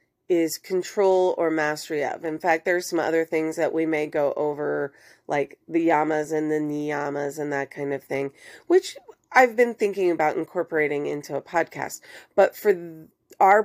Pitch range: 160-210 Hz